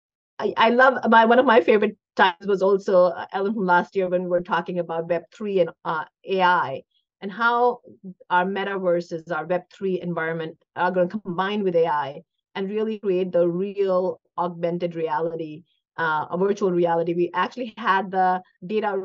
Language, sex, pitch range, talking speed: English, female, 170-215 Hz, 165 wpm